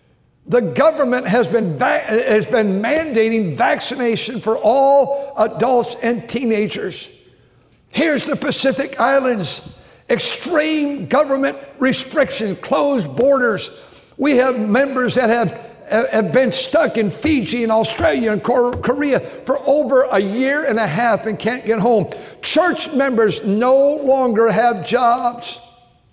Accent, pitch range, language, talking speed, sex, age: American, 225-270 Hz, English, 125 wpm, male, 60-79